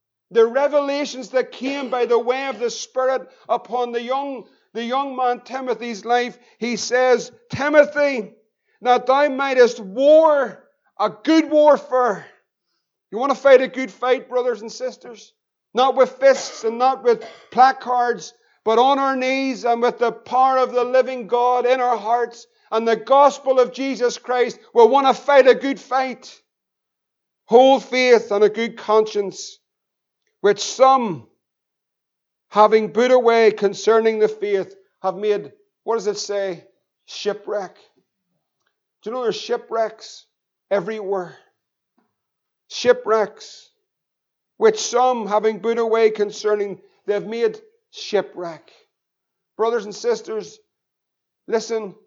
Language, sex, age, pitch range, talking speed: English, male, 50-69, 215-270 Hz, 135 wpm